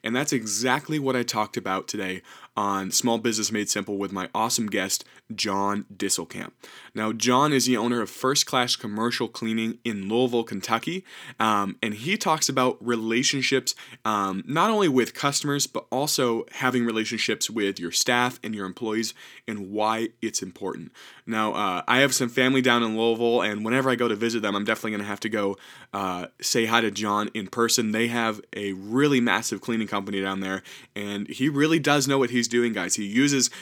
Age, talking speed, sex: 20-39, 190 wpm, male